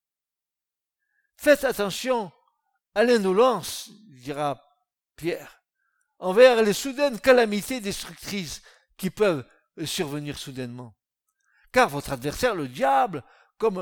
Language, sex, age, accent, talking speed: French, male, 60-79, French, 90 wpm